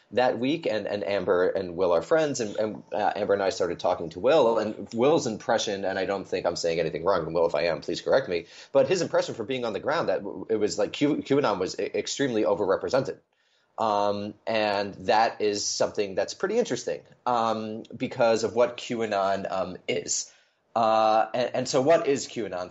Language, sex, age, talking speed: English, male, 30-49, 200 wpm